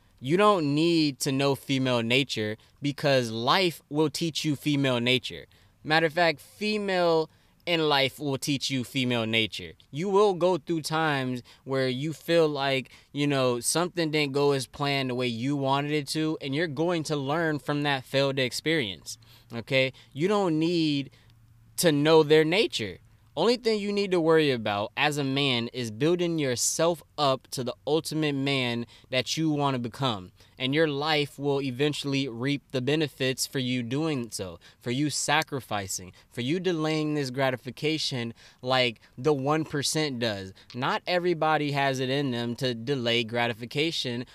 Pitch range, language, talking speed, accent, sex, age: 125-155 Hz, English, 160 wpm, American, male, 20-39